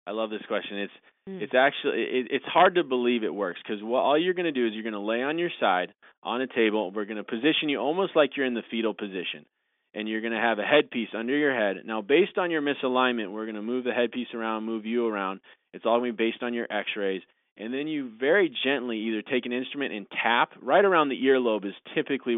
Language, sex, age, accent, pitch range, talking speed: English, male, 20-39, American, 105-130 Hz, 250 wpm